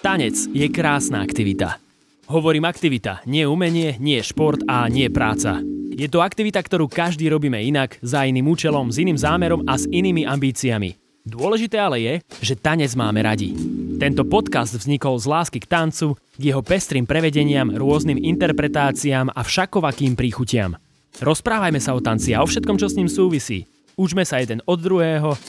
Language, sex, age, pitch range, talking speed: Slovak, male, 20-39, 125-165 Hz, 160 wpm